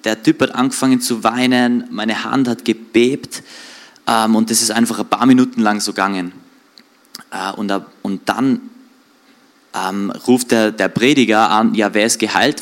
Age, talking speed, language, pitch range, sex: 20-39, 165 wpm, German, 105-140 Hz, male